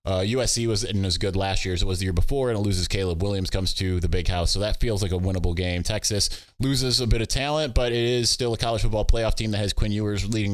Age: 20-39